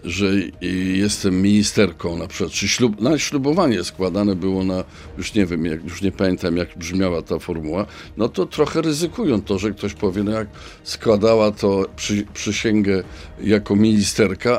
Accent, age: native, 50-69